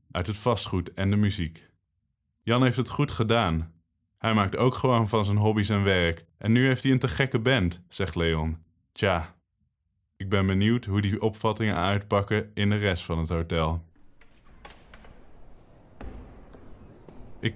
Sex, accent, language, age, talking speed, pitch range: male, Dutch, English, 20-39, 155 wpm, 90-110 Hz